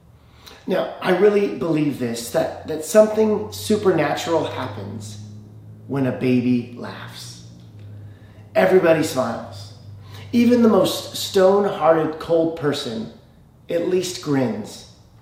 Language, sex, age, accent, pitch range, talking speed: English, male, 30-49, American, 130-190 Hz, 100 wpm